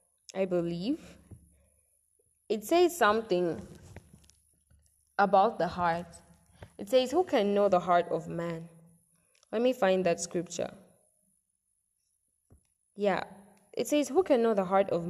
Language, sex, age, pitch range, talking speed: English, female, 10-29, 170-215 Hz, 125 wpm